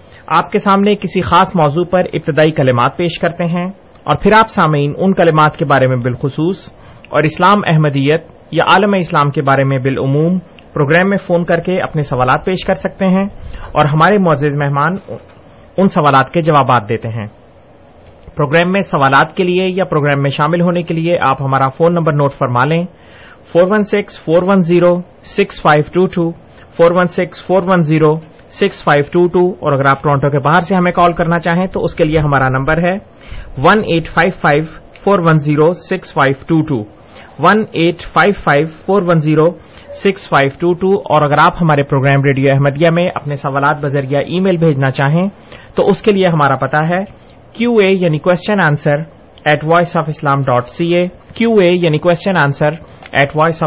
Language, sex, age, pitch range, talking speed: Urdu, male, 30-49, 145-180 Hz, 140 wpm